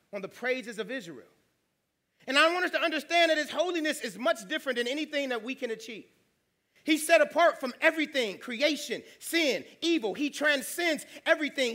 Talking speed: 175 wpm